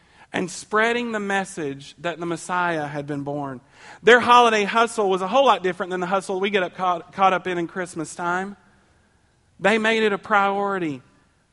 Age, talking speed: 40-59, 180 wpm